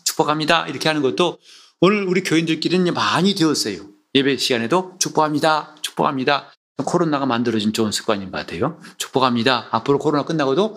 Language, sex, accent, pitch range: Korean, male, native, 145-210 Hz